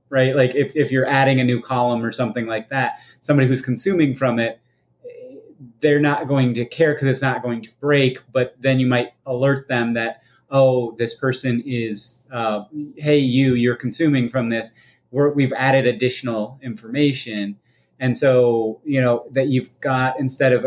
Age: 30-49